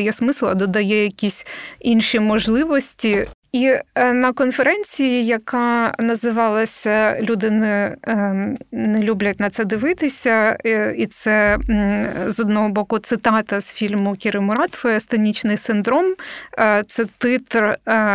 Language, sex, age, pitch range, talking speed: Ukrainian, female, 20-39, 210-245 Hz, 105 wpm